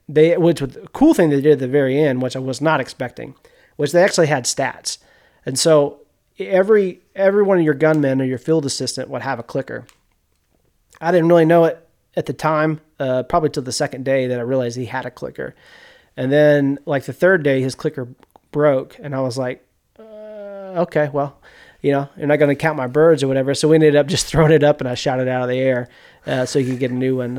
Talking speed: 235 wpm